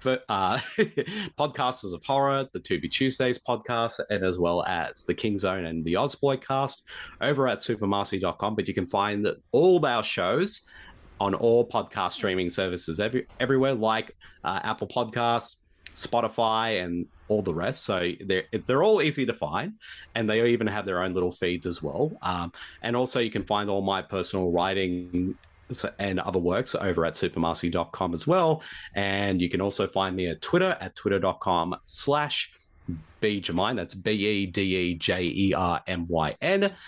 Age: 30-49